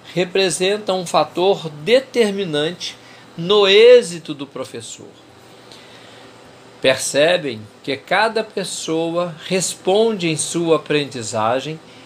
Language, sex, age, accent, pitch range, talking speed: Portuguese, male, 50-69, Brazilian, 145-200 Hz, 80 wpm